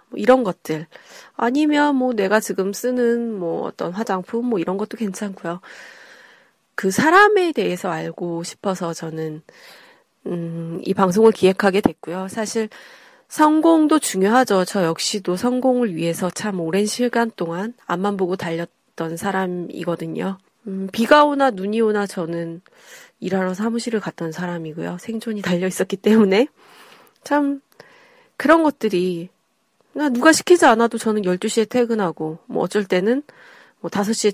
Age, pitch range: 30-49, 180-255 Hz